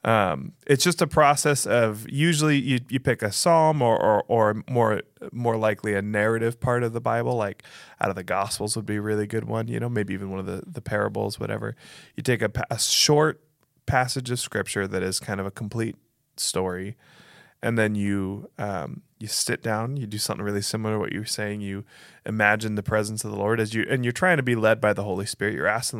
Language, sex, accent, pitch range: English, male, American, 100-120 Hz